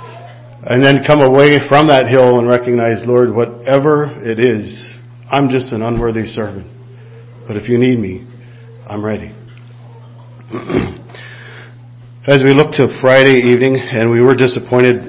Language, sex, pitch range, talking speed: English, male, 115-125 Hz, 140 wpm